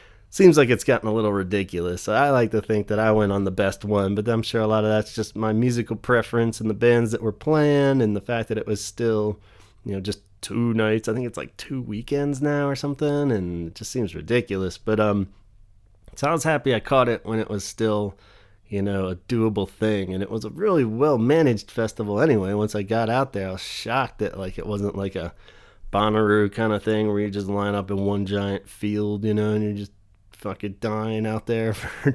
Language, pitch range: English, 100-125 Hz